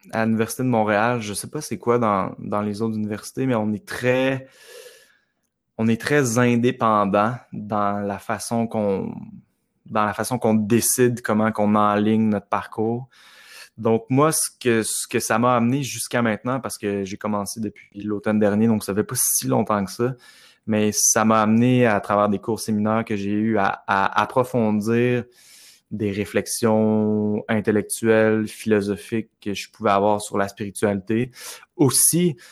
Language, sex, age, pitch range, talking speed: French, male, 20-39, 105-120 Hz, 160 wpm